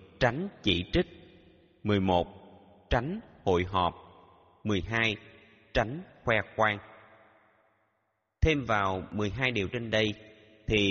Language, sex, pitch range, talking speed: Vietnamese, male, 85-120 Hz, 100 wpm